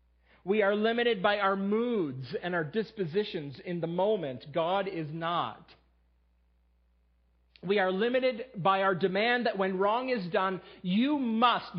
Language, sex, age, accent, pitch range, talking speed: English, male, 40-59, American, 130-195 Hz, 145 wpm